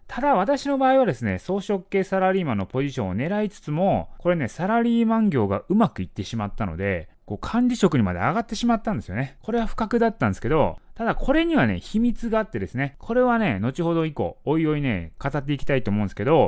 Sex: male